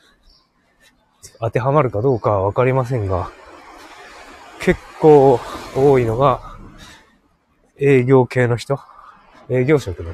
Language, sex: Japanese, male